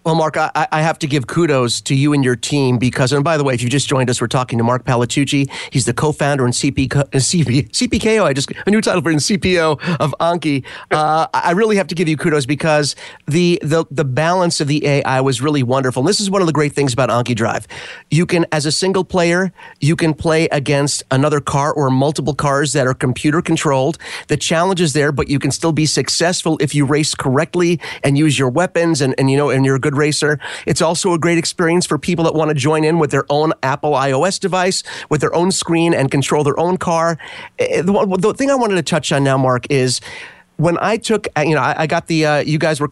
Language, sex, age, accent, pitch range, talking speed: English, male, 30-49, American, 140-175 Hz, 235 wpm